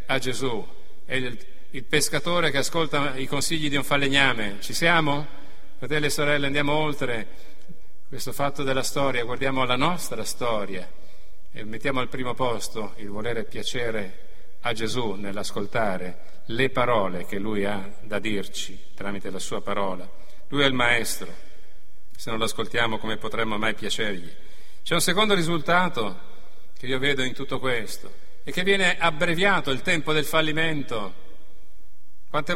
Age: 40-59